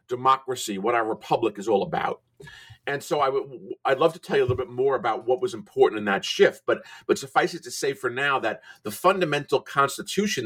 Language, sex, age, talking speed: English, male, 50-69, 210 wpm